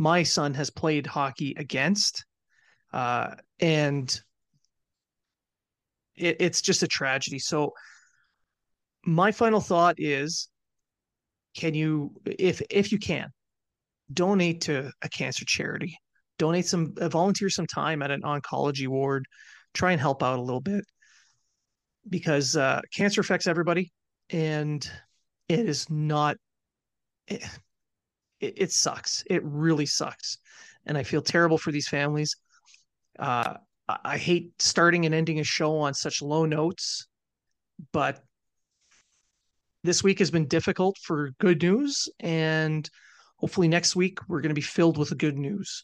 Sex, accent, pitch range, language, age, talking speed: male, American, 145-180 Hz, English, 30-49, 130 wpm